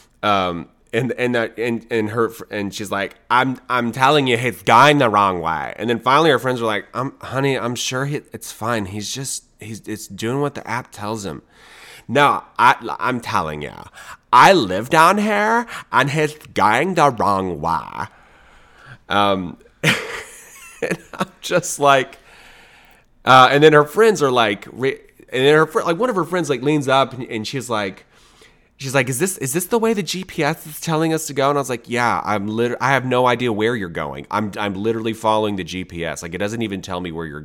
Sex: male